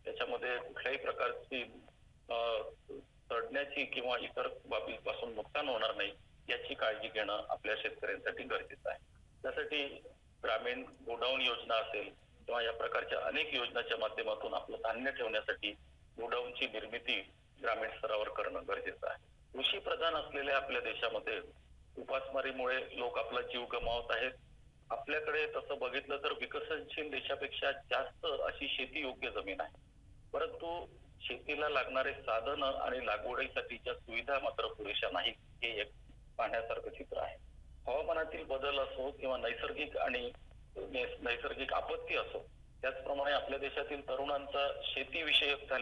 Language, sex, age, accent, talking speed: Marathi, male, 50-69, native, 100 wpm